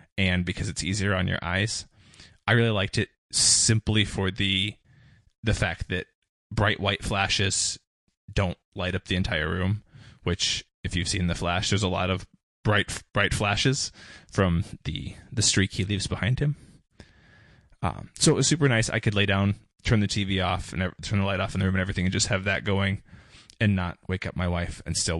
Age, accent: 20-39, American